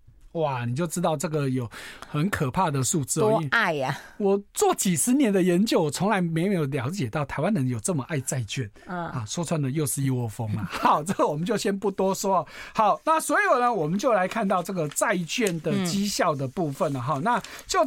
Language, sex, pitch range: Chinese, male, 145-220 Hz